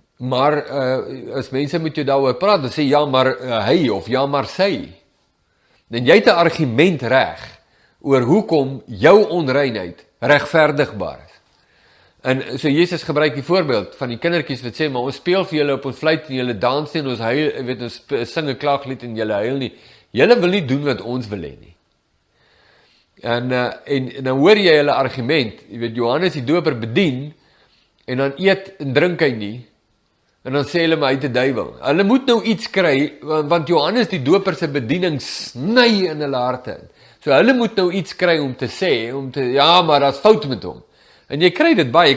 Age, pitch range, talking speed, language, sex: 50-69, 130-175 Hz, 200 wpm, English, male